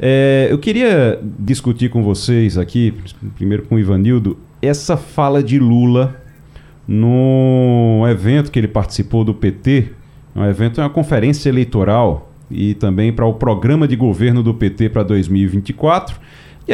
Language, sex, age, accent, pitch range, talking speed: Portuguese, male, 40-59, Brazilian, 110-145 Hz, 135 wpm